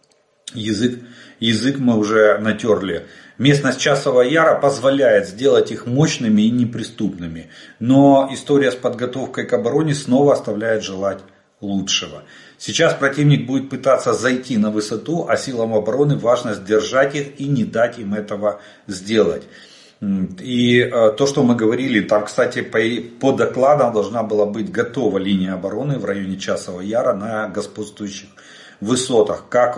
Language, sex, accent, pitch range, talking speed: Russian, male, native, 100-135 Hz, 135 wpm